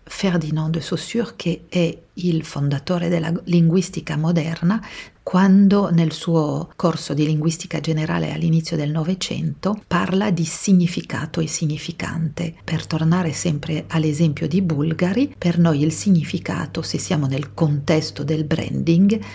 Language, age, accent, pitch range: Italian, 50-69, native, 155-180 Hz